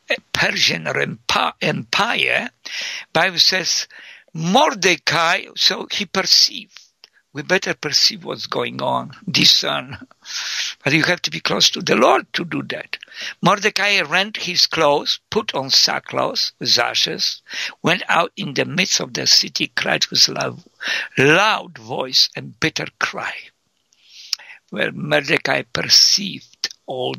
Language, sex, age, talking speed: English, male, 60-79, 120 wpm